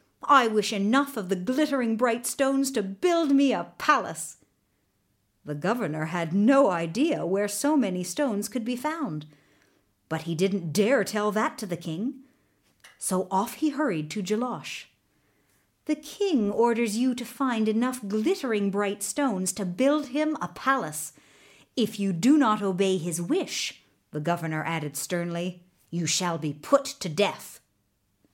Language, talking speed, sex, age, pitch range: English, 150 wpm, female, 50-69, 165-265 Hz